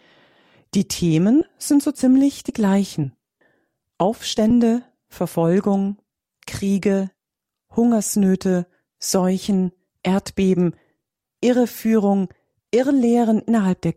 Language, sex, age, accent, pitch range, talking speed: German, female, 40-59, German, 165-220 Hz, 75 wpm